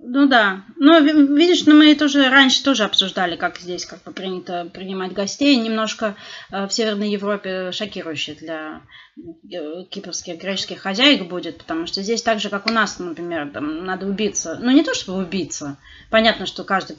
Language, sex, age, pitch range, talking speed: Russian, female, 20-39, 180-260 Hz, 175 wpm